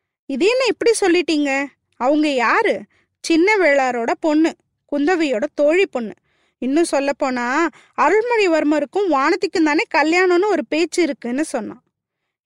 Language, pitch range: Tamil, 265-360 Hz